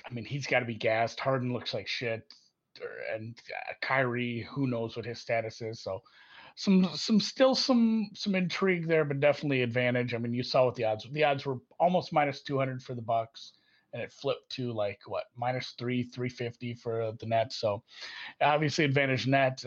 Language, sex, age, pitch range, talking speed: English, male, 30-49, 125-160 Hz, 195 wpm